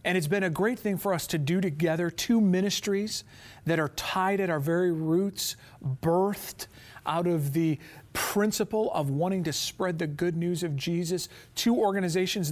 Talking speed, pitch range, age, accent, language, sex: 175 wpm, 130-190 Hz, 40-59, American, English, male